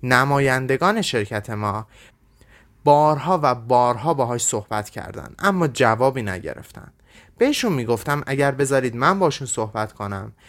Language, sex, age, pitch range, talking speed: Persian, male, 30-49, 110-145 Hz, 115 wpm